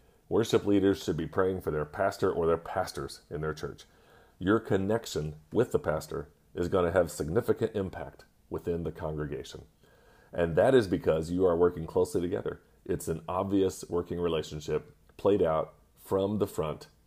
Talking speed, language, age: 160 wpm, English, 40-59